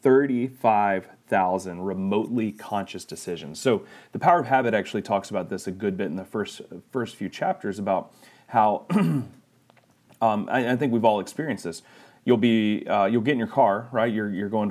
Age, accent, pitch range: 30-49, American, 100-120 Hz